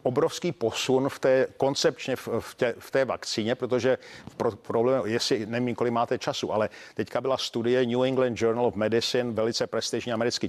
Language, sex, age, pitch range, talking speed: Czech, male, 50-69, 120-140 Hz, 170 wpm